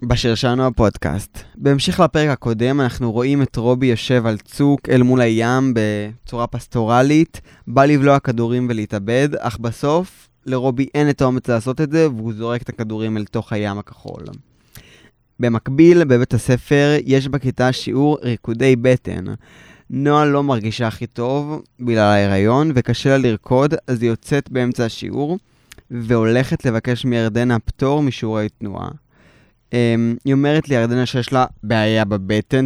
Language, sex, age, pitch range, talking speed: Hebrew, male, 20-39, 115-140 Hz, 140 wpm